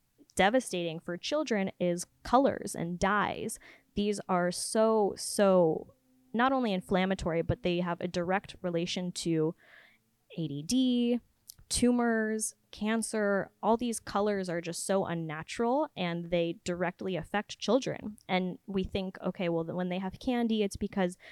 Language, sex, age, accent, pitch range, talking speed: English, female, 20-39, American, 170-210 Hz, 130 wpm